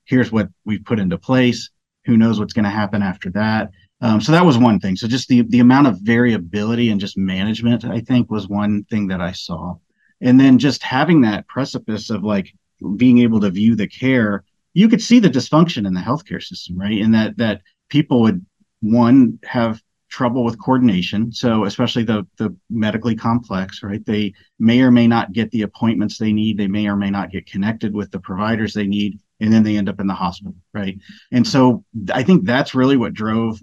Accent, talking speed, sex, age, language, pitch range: American, 210 wpm, male, 40-59, English, 100-120 Hz